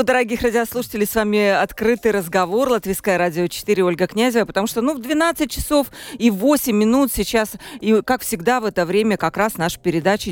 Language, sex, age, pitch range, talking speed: Russian, female, 40-59, 180-245 Hz, 180 wpm